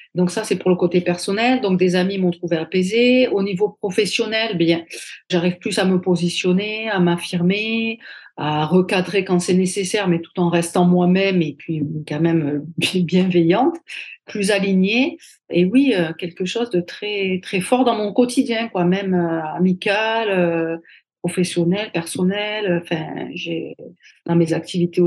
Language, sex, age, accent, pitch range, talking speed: French, female, 40-59, French, 170-200 Hz, 150 wpm